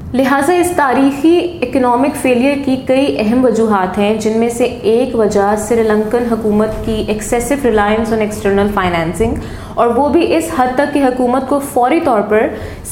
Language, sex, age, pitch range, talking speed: Urdu, female, 20-39, 215-255 Hz, 165 wpm